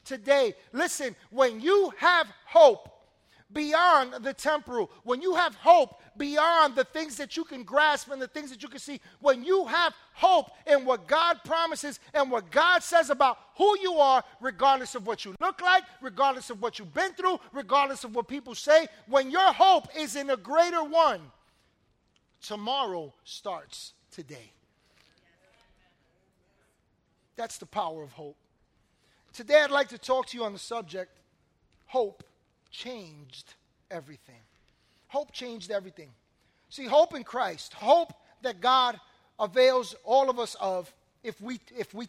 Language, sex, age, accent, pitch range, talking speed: English, male, 40-59, American, 210-295 Hz, 155 wpm